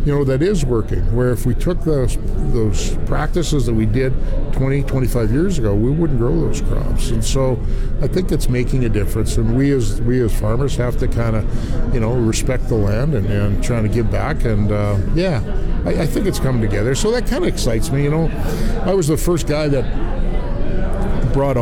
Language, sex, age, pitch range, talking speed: English, male, 50-69, 110-140 Hz, 210 wpm